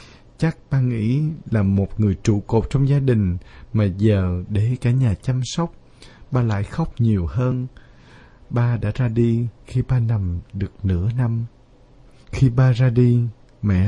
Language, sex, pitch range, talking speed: Vietnamese, male, 105-135 Hz, 165 wpm